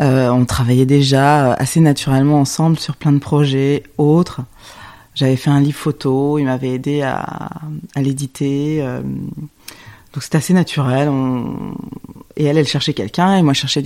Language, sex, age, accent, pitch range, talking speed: French, female, 20-39, French, 135-160 Hz, 165 wpm